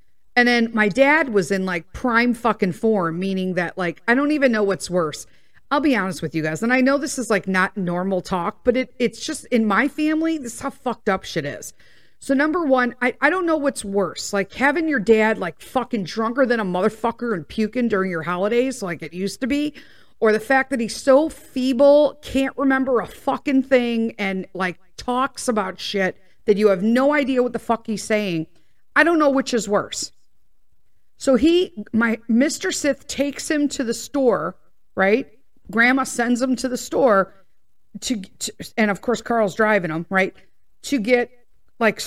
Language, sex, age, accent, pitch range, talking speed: English, female, 50-69, American, 190-260 Hz, 200 wpm